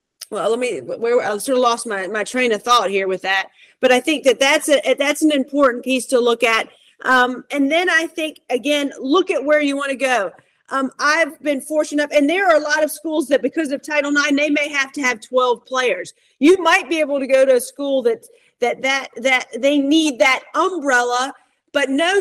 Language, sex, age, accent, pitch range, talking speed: English, female, 40-59, American, 250-305 Hz, 230 wpm